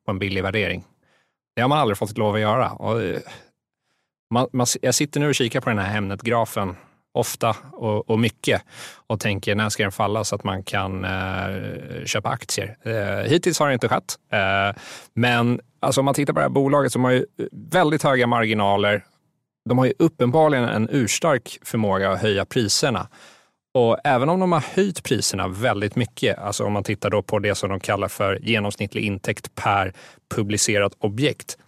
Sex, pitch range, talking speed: male, 100-130 Hz, 185 wpm